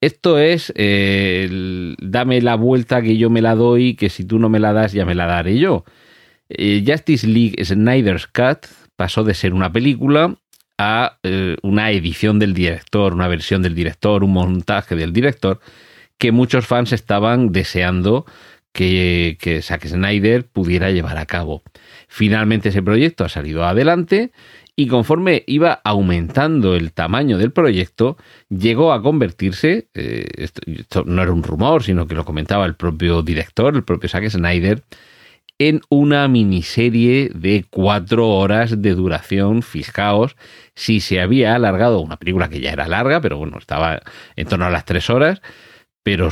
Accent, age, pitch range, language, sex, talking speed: Spanish, 40-59, 90-120 Hz, Spanish, male, 160 wpm